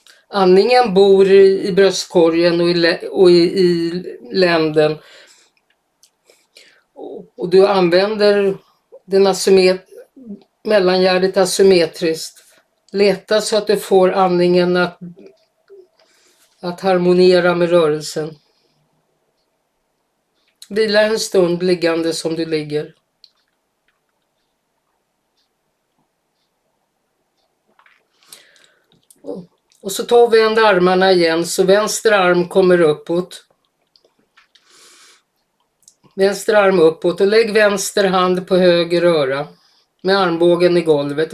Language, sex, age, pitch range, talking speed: Swedish, female, 50-69, 170-195 Hz, 85 wpm